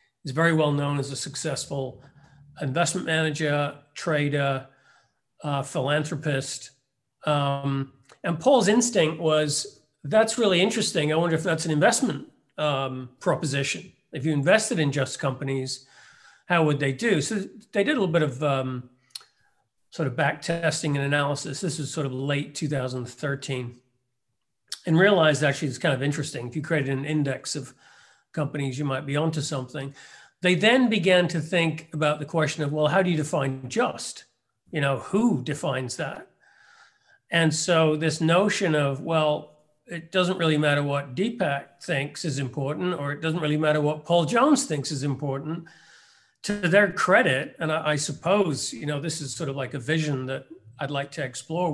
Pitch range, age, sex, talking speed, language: 140-170 Hz, 40-59, male, 165 wpm, English